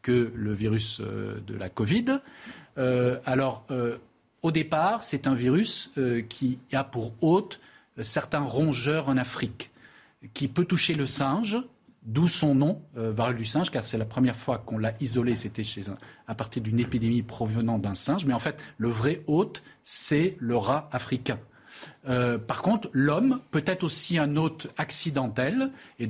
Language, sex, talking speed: French, male, 175 wpm